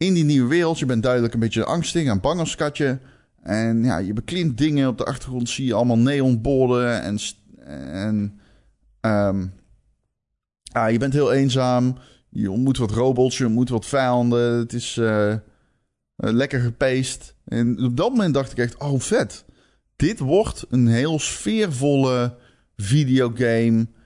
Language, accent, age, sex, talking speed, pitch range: Dutch, Dutch, 20-39, male, 155 wpm, 110-140 Hz